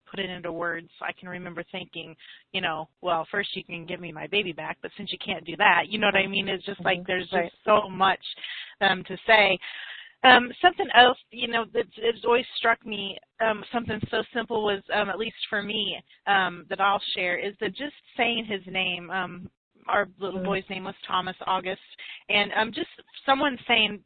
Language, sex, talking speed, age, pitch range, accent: English, female, 205 wpm, 30-49, 180-210 Hz, American